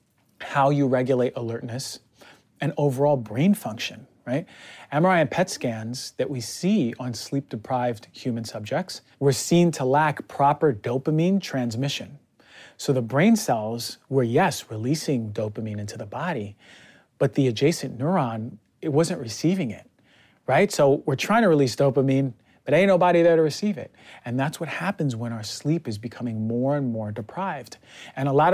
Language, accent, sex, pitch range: English, American, male, 120-150 Hz